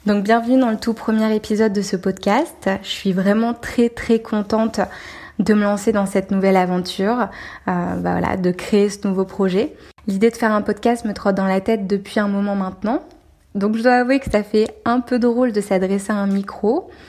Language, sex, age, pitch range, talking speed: French, female, 20-39, 190-225 Hz, 210 wpm